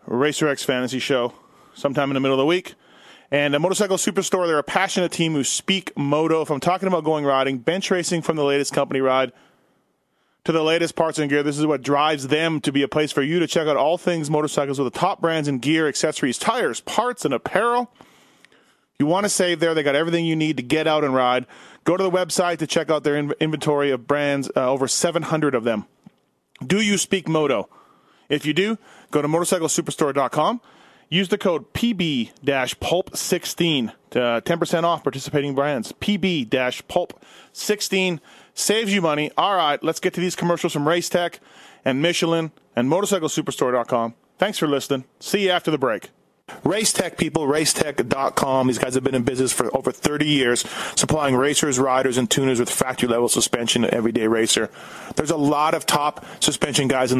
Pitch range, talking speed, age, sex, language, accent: 135-170 Hz, 185 wpm, 30-49, male, English, American